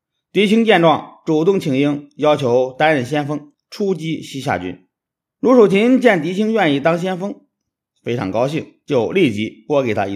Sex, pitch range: male, 135-185 Hz